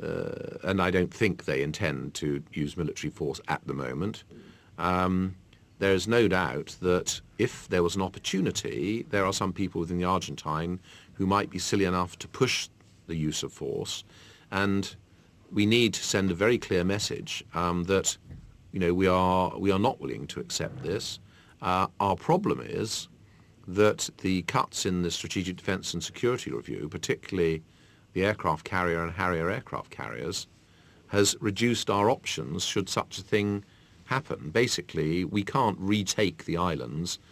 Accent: British